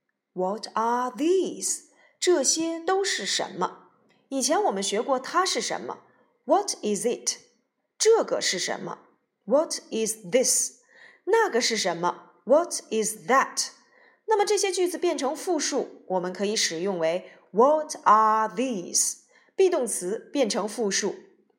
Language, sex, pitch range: Chinese, female, 215-330 Hz